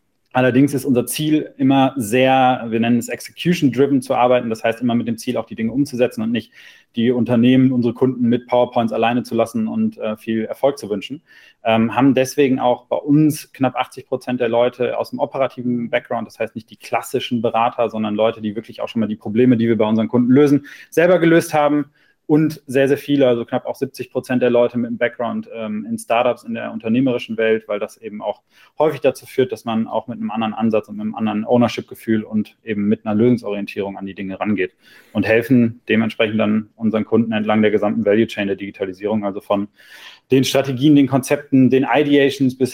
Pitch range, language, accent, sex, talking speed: 110-130 Hz, German, German, male, 210 wpm